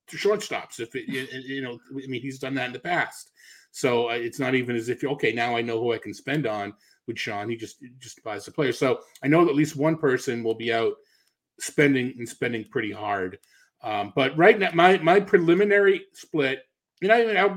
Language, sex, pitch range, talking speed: English, male, 115-145 Hz, 215 wpm